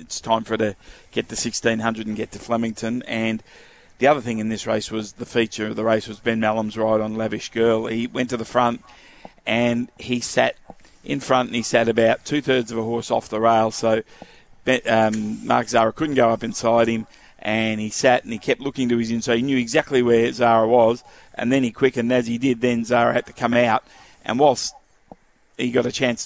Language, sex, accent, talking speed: English, male, Australian, 220 wpm